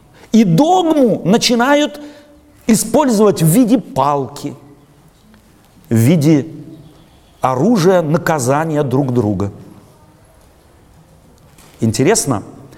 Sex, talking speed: male, 65 wpm